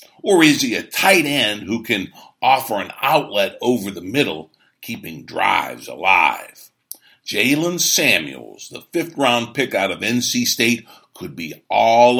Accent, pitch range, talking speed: American, 110-125 Hz, 145 wpm